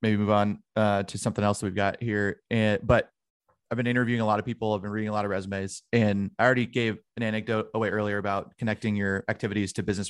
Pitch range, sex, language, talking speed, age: 105-125 Hz, male, English, 245 wpm, 30-49